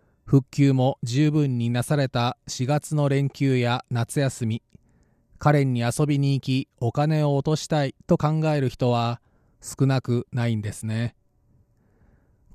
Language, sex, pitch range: Japanese, male, 125-150 Hz